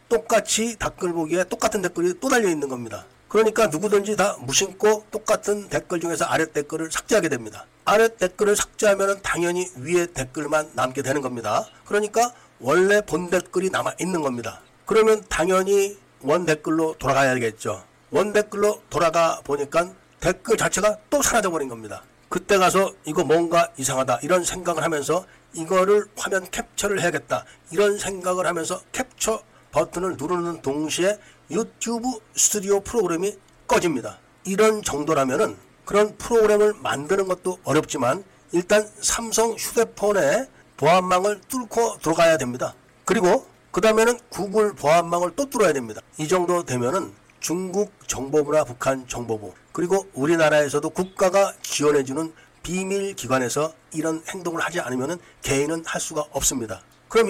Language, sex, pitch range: Korean, male, 155-210 Hz